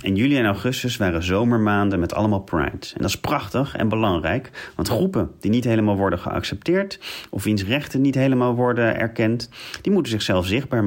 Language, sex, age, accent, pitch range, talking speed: Dutch, male, 40-59, Dutch, 95-115 Hz, 180 wpm